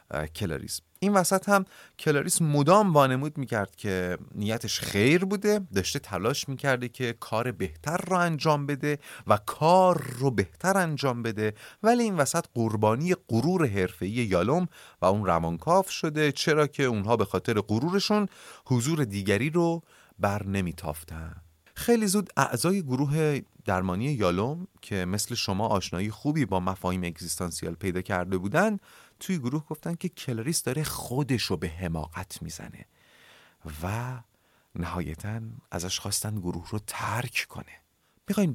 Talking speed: 130 wpm